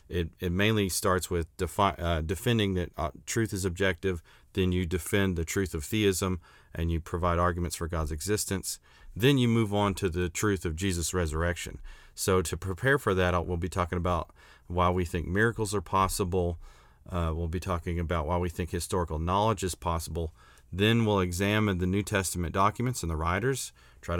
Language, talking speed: English, 185 wpm